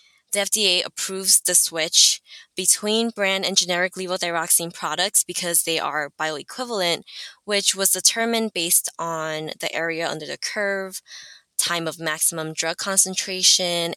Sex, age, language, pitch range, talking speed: female, 10-29, English, 165-190 Hz, 130 wpm